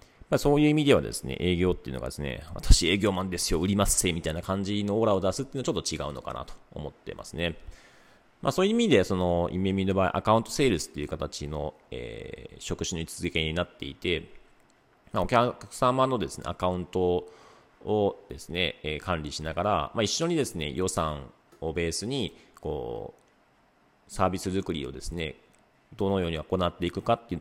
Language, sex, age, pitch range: Japanese, male, 40-59, 85-110 Hz